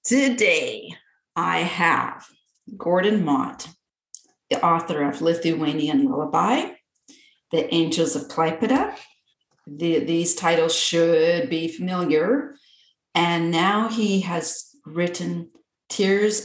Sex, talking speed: female, 90 wpm